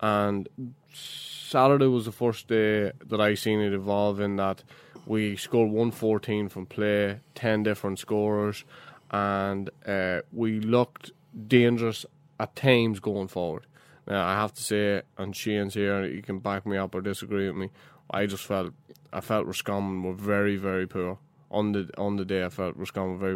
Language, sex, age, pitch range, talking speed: English, male, 20-39, 95-110 Hz, 170 wpm